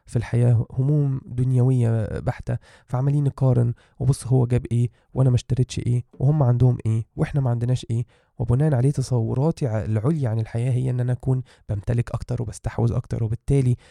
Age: 20-39